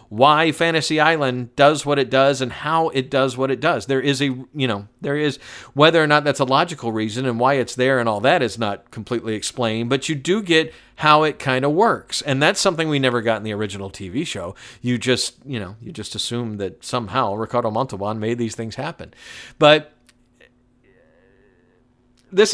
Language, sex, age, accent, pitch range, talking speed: English, male, 50-69, American, 125-155 Hz, 200 wpm